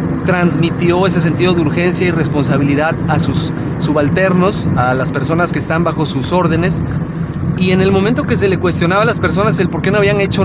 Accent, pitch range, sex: Mexican, 150-180 Hz, male